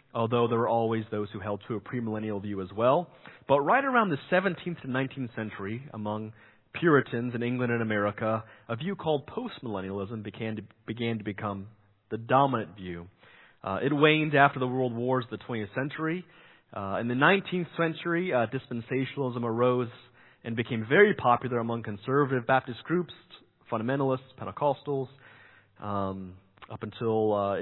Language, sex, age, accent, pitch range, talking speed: English, male, 30-49, American, 105-140 Hz, 155 wpm